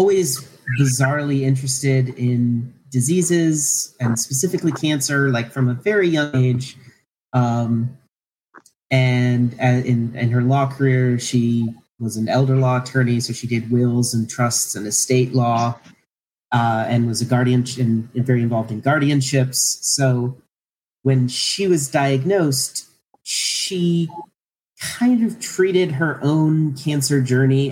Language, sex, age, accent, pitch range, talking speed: English, male, 30-49, American, 120-140 Hz, 130 wpm